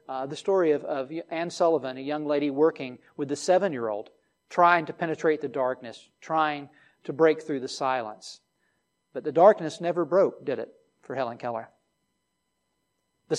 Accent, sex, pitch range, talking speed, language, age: American, male, 150-195 Hz, 160 wpm, English, 40-59